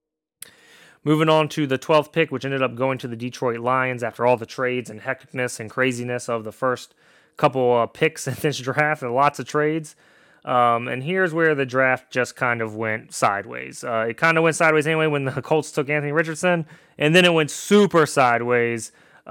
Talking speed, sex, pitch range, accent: 200 wpm, male, 120-150 Hz, American